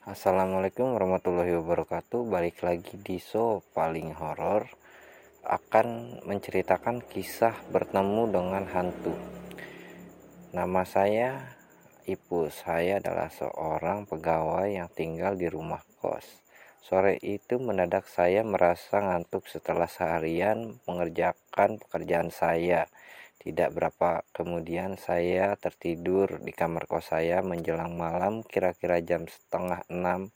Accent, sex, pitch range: Indonesian, male, 85-100 Hz